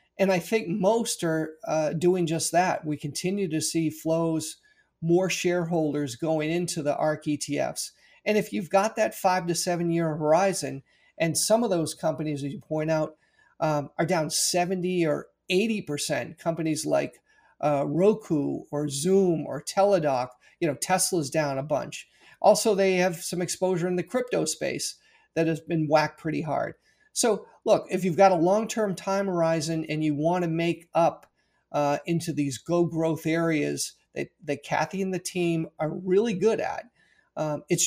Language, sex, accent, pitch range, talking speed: English, male, American, 155-185 Hz, 170 wpm